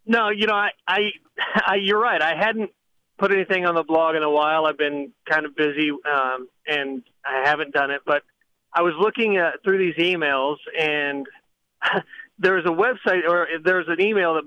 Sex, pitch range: male, 165-205 Hz